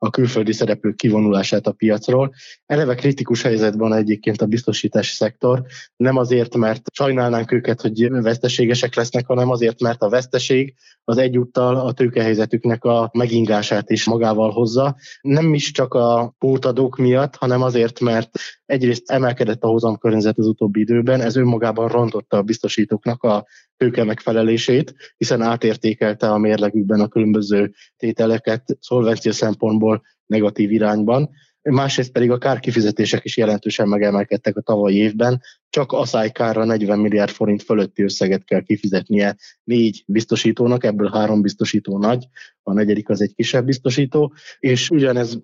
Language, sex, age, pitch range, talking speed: Hungarian, male, 20-39, 110-125 Hz, 140 wpm